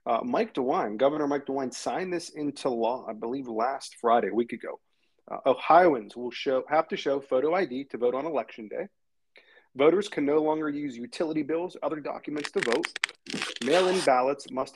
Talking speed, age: 180 wpm, 40-59